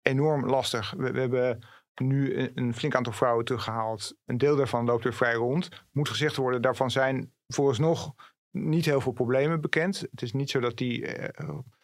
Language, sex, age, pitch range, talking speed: Dutch, male, 40-59, 120-145 Hz, 190 wpm